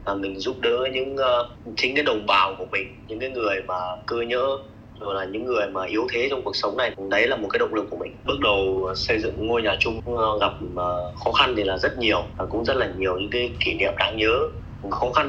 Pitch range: 95-120 Hz